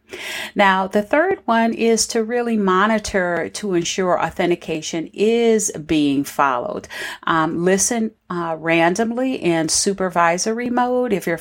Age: 40-59